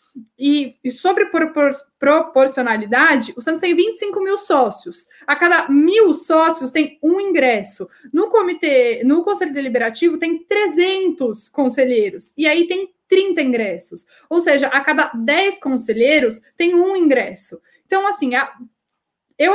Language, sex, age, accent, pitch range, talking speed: Portuguese, female, 20-39, Brazilian, 265-355 Hz, 130 wpm